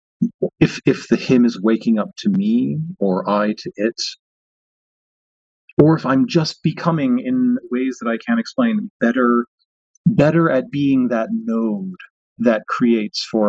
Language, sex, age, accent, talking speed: English, male, 30-49, American, 145 wpm